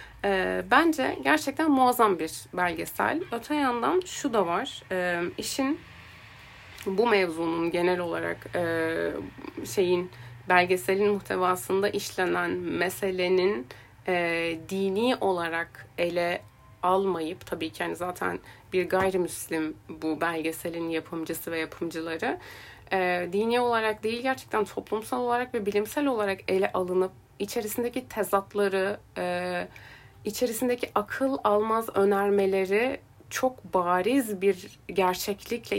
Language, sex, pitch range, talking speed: Turkish, female, 175-225 Hz, 95 wpm